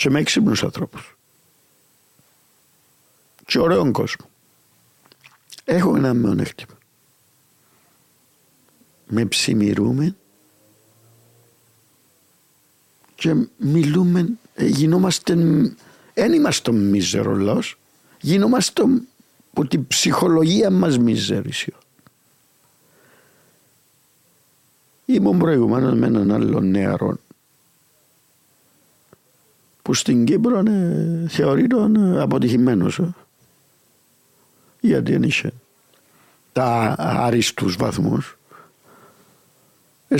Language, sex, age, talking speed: Greek, male, 50-69, 70 wpm